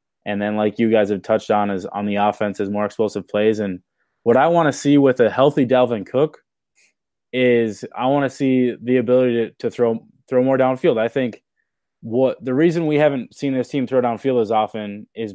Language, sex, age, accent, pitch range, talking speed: English, male, 20-39, American, 105-125 Hz, 215 wpm